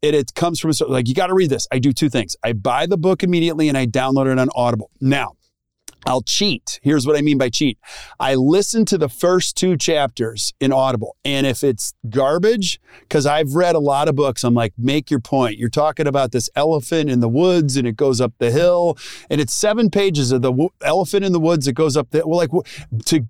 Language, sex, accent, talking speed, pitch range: English, male, American, 235 wpm, 125-160 Hz